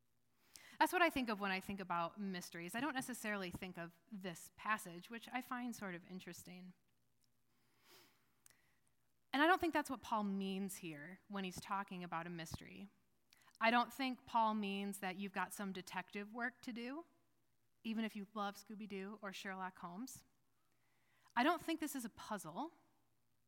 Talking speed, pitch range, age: 170 wpm, 190-285 Hz, 30-49